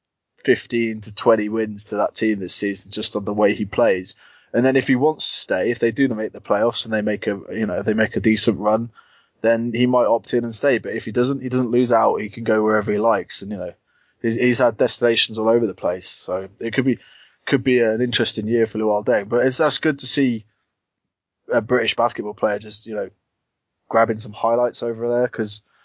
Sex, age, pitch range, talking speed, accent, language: male, 20-39, 105-120 Hz, 235 wpm, British, English